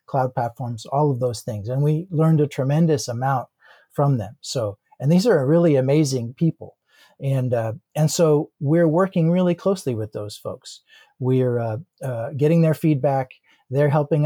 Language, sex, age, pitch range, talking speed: English, male, 40-59, 130-160 Hz, 170 wpm